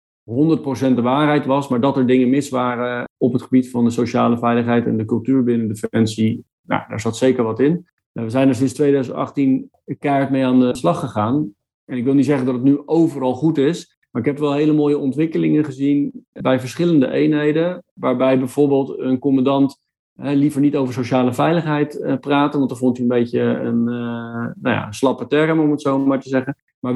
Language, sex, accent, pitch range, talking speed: Dutch, male, Dutch, 130-150 Hz, 205 wpm